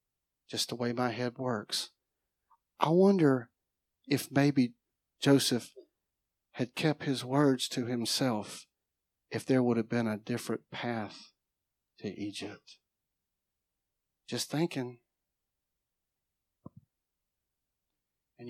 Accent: American